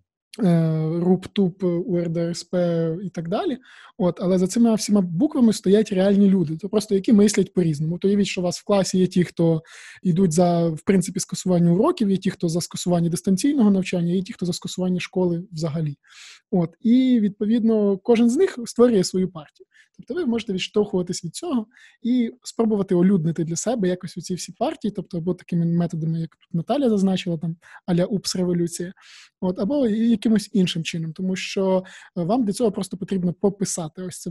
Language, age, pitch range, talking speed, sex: Ukrainian, 20-39, 175-205 Hz, 175 wpm, male